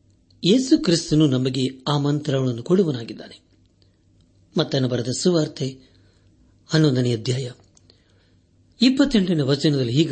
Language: Kannada